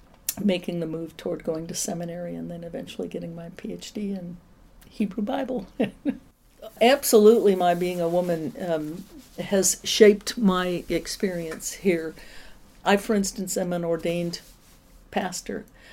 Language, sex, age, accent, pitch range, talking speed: English, female, 60-79, American, 170-205 Hz, 130 wpm